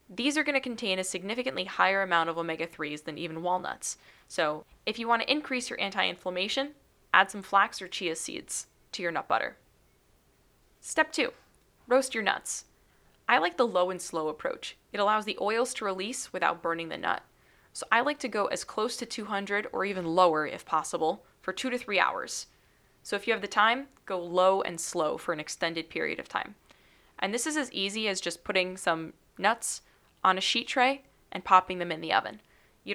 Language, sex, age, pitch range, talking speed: English, female, 20-39, 180-240 Hz, 195 wpm